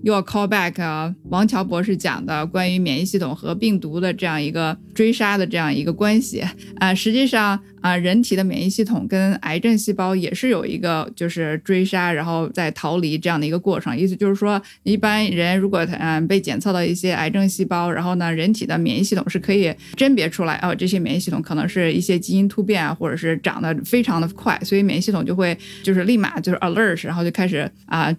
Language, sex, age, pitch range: Chinese, female, 20-39, 180-215 Hz